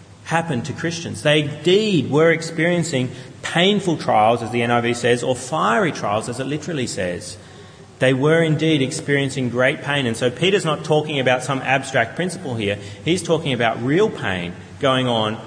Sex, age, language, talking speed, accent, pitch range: male, 30-49, English, 165 wpm, Australian, 125-170 Hz